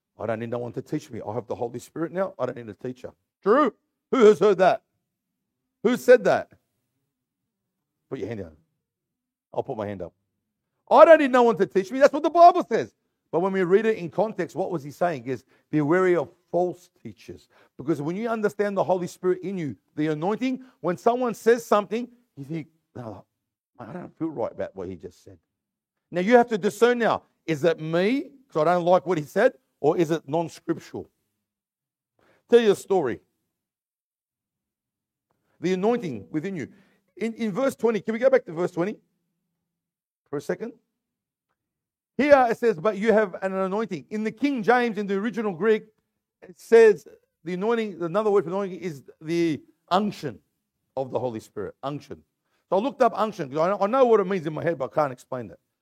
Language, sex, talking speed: English, male, 200 wpm